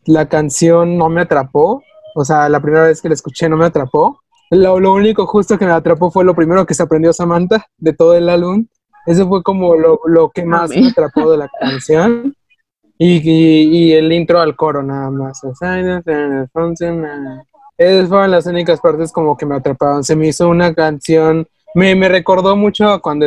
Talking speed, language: 190 wpm, Spanish